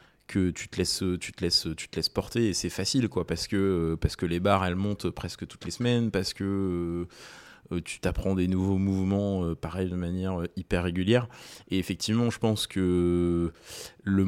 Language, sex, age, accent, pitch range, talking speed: French, male, 20-39, French, 90-105 Hz, 190 wpm